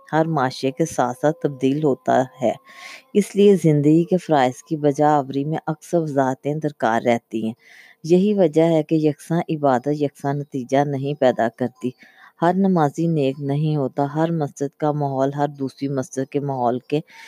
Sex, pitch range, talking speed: female, 135-160 Hz, 165 wpm